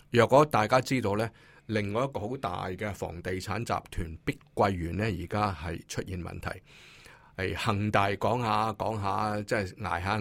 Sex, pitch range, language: male, 95-135 Hz, Chinese